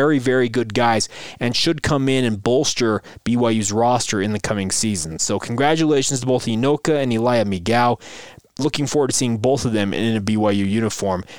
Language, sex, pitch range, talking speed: English, male, 110-140 Hz, 185 wpm